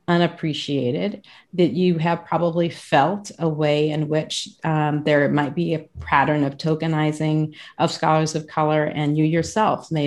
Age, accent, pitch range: 40-59, American, 150-170 Hz